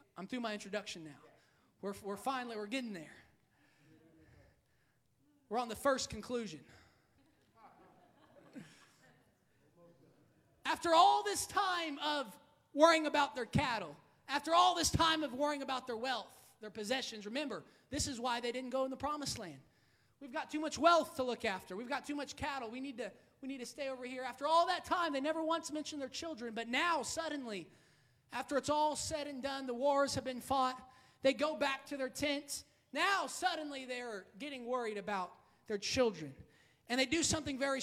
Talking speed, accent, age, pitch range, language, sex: 180 wpm, American, 20-39, 235-290 Hz, English, male